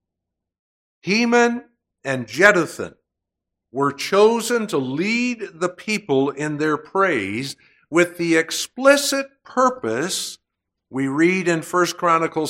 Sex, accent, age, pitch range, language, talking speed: male, American, 60-79, 130-190 Hz, English, 100 wpm